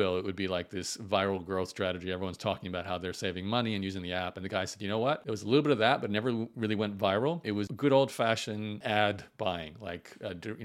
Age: 40-59